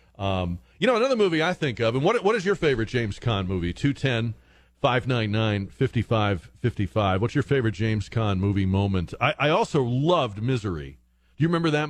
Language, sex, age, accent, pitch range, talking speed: English, male, 40-59, American, 85-125 Hz, 210 wpm